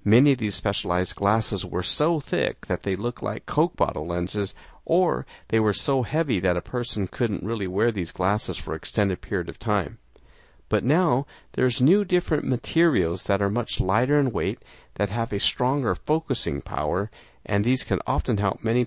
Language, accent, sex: English, American, male